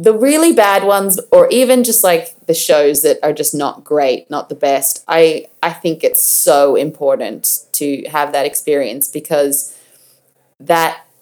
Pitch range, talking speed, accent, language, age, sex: 150-190 Hz, 160 wpm, Australian, English, 20-39, female